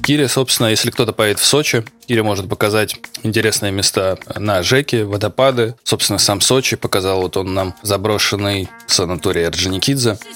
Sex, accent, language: male, native, Russian